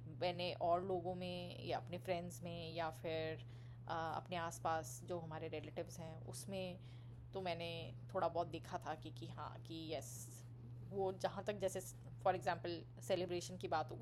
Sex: female